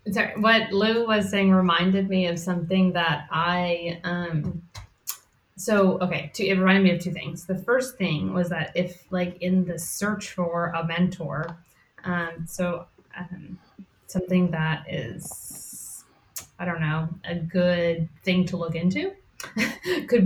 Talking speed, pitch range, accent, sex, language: 150 wpm, 170-190 Hz, American, female, English